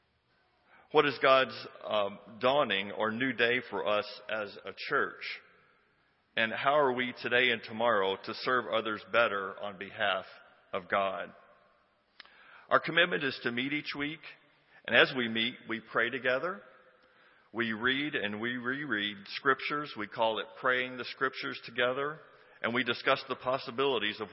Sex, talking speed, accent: male, 150 wpm, American